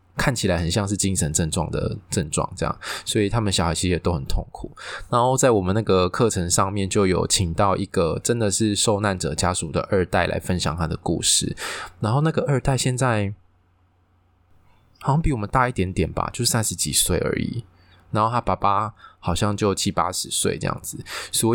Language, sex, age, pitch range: Chinese, male, 20-39, 90-110 Hz